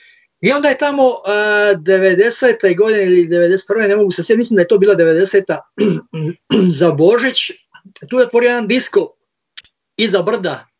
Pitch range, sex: 170-235 Hz, male